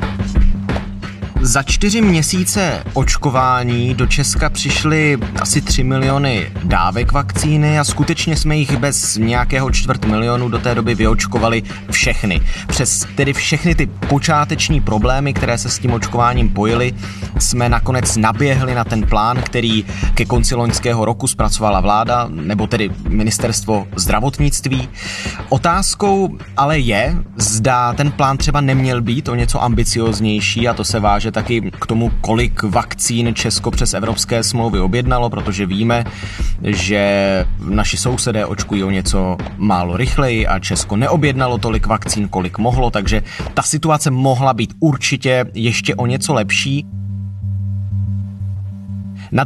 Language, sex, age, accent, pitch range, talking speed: Czech, male, 30-49, native, 100-135 Hz, 130 wpm